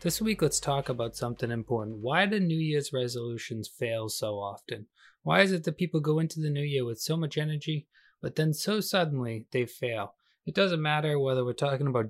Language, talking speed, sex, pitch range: English, 210 wpm, male, 125-155 Hz